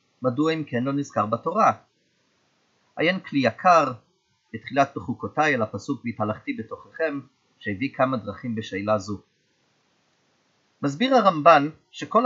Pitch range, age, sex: 130-185 Hz, 30-49, male